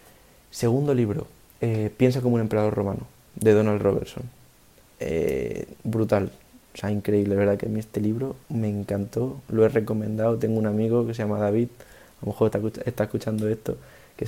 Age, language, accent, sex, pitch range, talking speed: 20-39, Spanish, Spanish, male, 105-115 Hz, 175 wpm